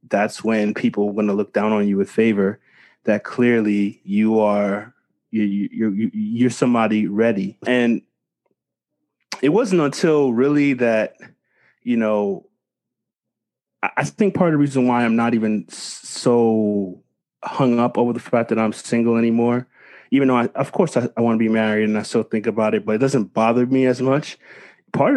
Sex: male